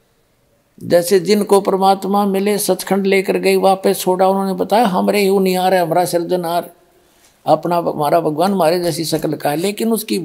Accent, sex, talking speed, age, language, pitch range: native, male, 150 wpm, 60-79, Hindi, 175-220 Hz